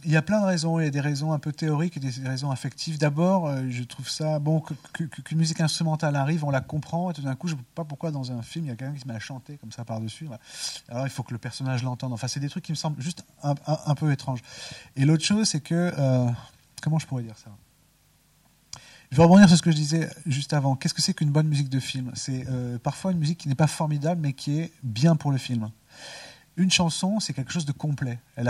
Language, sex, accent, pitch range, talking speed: French, male, French, 125-160 Hz, 265 wpm